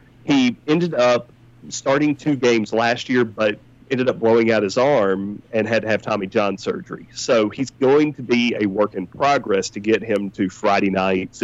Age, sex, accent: 40-59, male, American